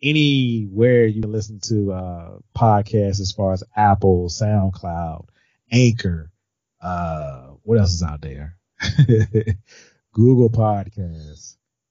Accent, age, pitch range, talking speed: American, 30-49, 100-125 Hz, 105 wpm